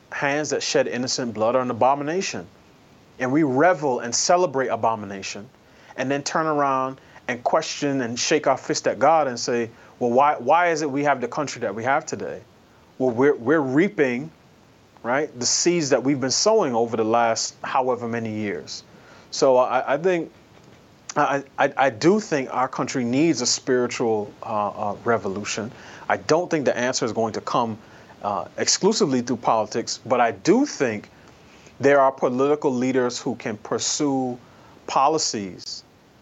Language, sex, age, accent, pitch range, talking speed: English, male, 30-49, American, 120-150 Hz, 165 wpm